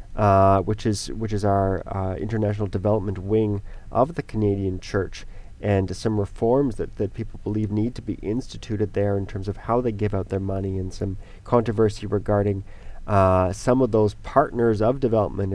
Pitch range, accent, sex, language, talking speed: 100-120 Hz, American, male, English, 180 wpm